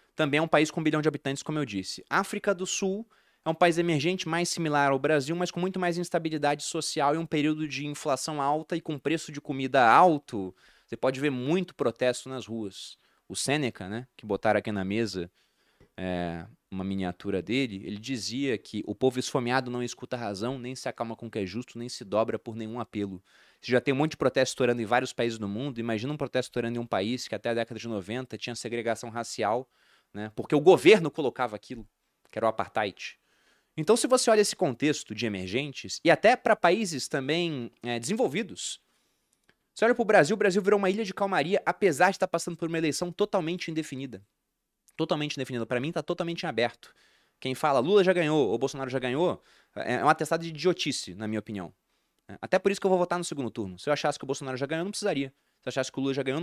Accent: Brazilian